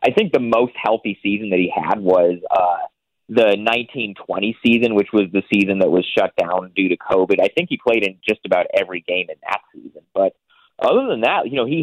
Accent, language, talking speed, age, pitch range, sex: American, English, 230 wpm, 30-49, 95-120 Hz, male